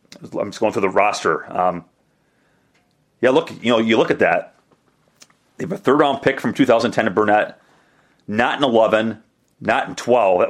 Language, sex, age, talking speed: English, male, 30-49, 175 wpm